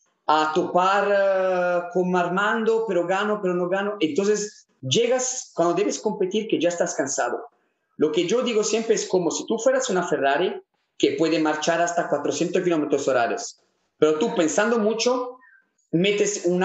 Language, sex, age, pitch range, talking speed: Spanish, male, 30-49, 170-225 Hz, 160 wpm